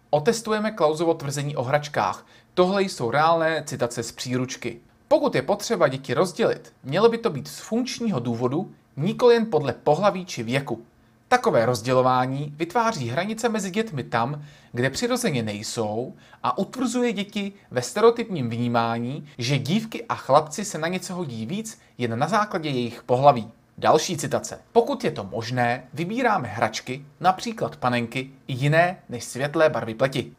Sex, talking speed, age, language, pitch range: male, 145 wpm, 30-49, Czech, 120-190 Hz